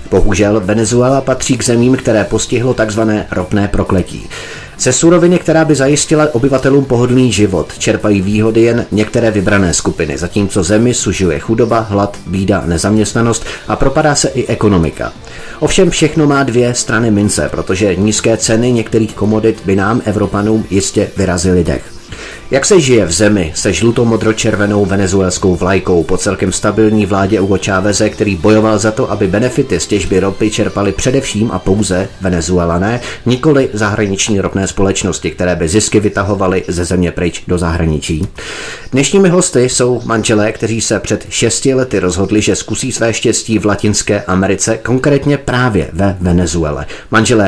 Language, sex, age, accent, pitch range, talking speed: Czech, male, 30-49, native, 95-120 Hz, 150 wpm